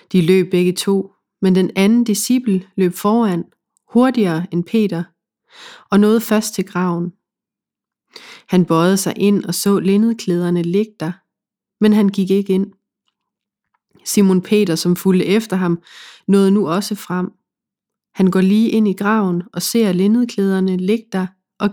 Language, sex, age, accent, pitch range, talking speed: Danish, female, 30-49, native, 185-215 Hz, 150 wpm